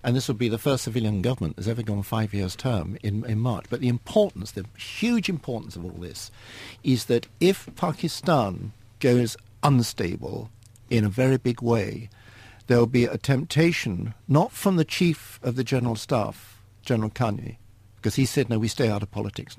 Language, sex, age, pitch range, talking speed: English, male, 60-79, 105-130 Hz, 185 wpm